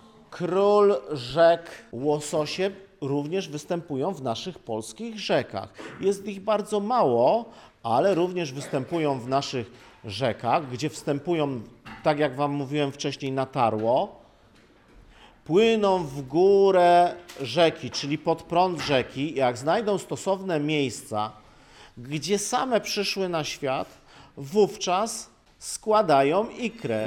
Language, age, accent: Polish, 50-69, native